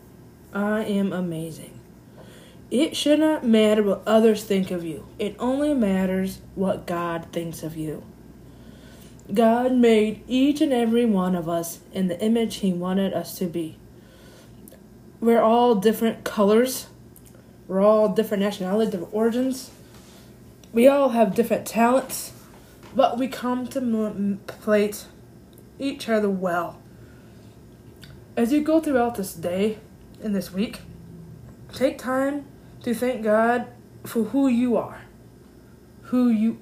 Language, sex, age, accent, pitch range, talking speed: English, female, 20-39, American, 190-250 Hz, 130 wpm